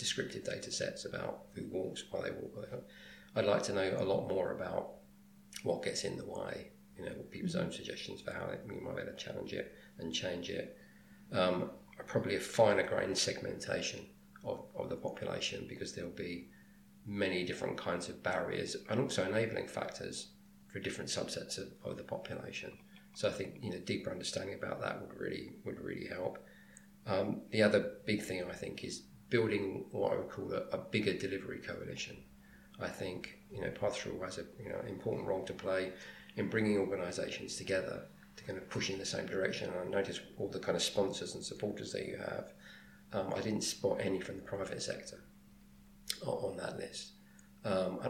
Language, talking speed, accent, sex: English, 185 wpm, British, male